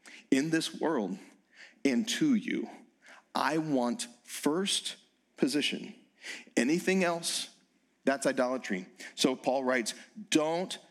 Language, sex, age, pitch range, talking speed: English, male, 40-59, 160-255 Hz, 100 wpm